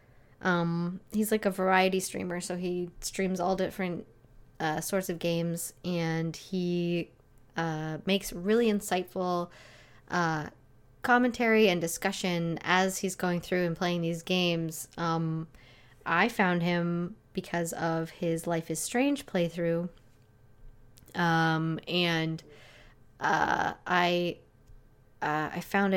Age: 20-39